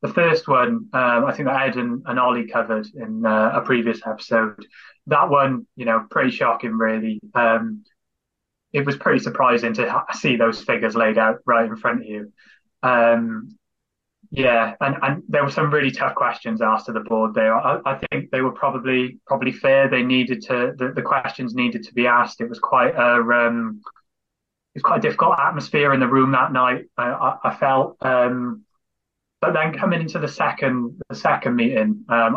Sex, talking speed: male, 195 wpm